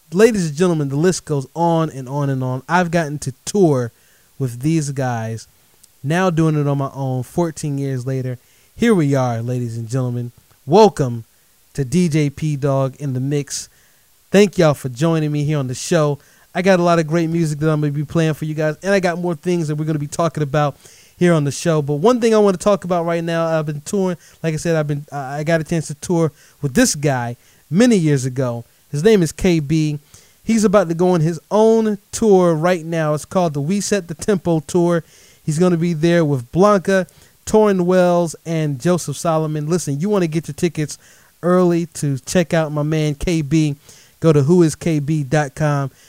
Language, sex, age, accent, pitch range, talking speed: English, male, 20-39, American, 140-175 Hz, 210 wpm